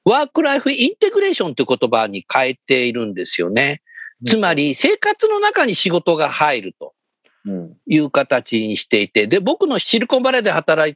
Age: 50-69